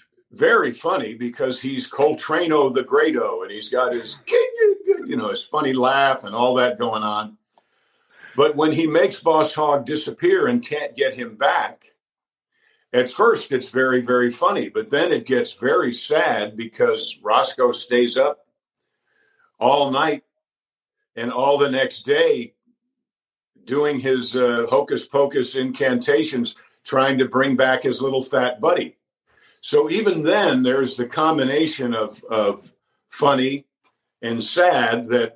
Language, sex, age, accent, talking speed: English, male, 50-69, American, 135 wpm